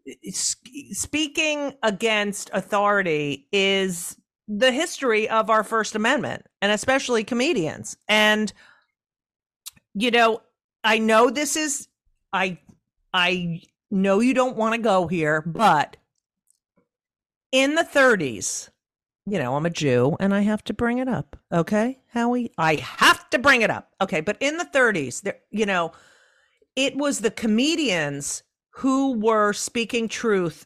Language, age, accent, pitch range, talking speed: English, 50-69, American, 180-240 Hz, 135 wpm